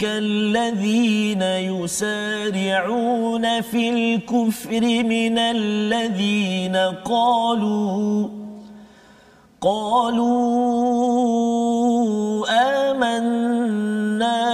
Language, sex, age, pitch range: Malayalam, male, 40-59, 215-250 Hz